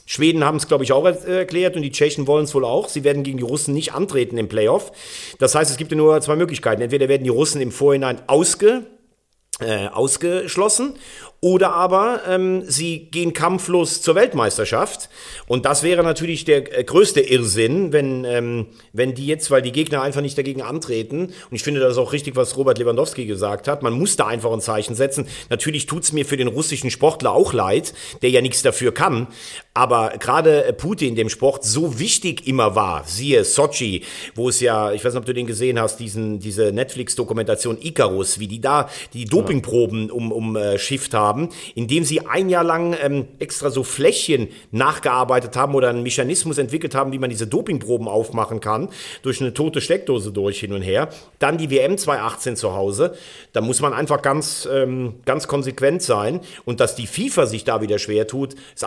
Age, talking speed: 40-59, 195 wpm